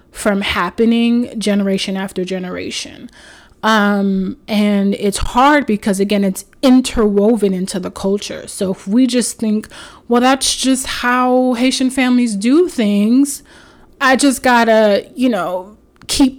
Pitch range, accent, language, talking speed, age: 200-240 Hz, American, English, 130 wpm, 20-39